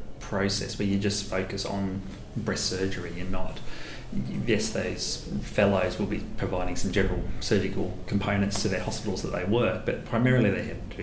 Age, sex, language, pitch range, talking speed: 30-49, male, English, 95-105 Hz, 170 wpm